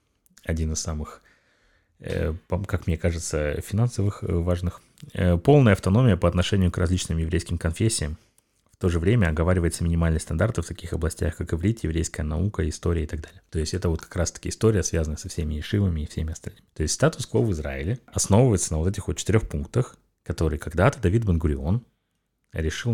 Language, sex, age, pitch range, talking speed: Russian, male, 30-49, 80-100 Hz, 170 wpm